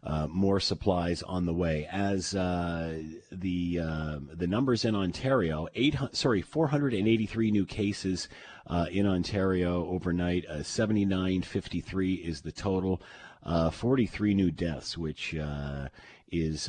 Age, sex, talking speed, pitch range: 40-59, male, 125 wpm, 80-105 Hz